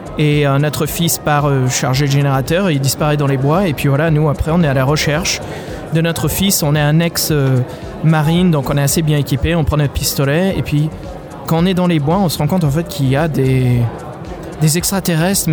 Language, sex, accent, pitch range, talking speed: French, male, French, 145-175 Hz, 245 wpm